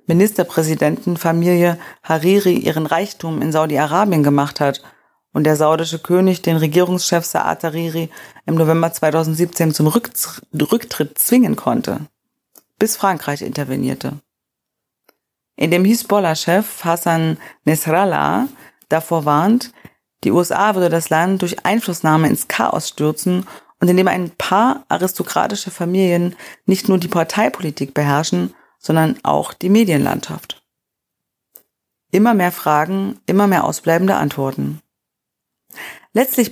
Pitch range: 155-195 Hz